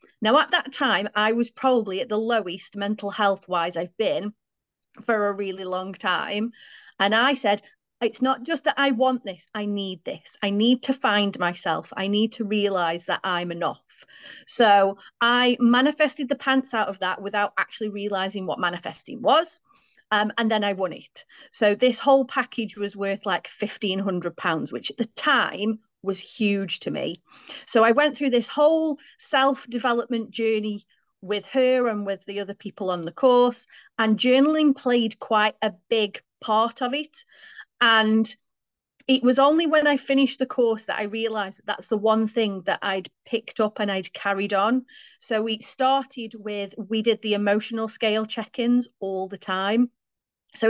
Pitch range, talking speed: 200-245 Hz, 175 wpm